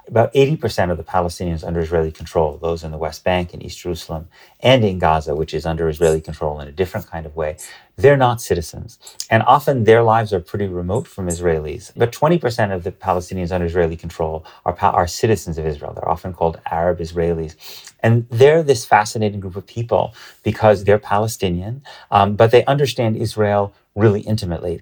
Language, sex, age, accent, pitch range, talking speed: English, male, 30-49, American, 90-115 Hz, 185 wpm